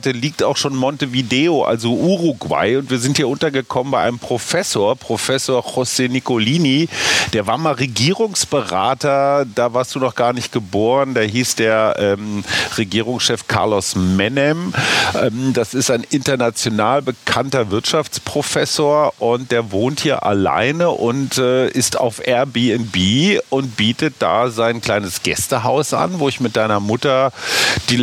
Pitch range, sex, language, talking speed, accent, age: 110-140 Hz, male, German, 140 wpm, German, 40-59